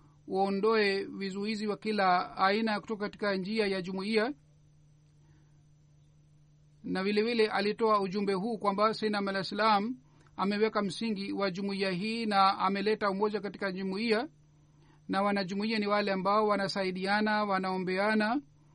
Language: Swahili